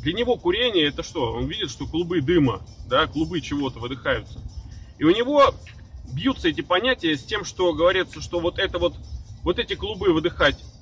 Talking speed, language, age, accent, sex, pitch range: 170 wpm, Russian, 30-49, native, male, 135-215 Hz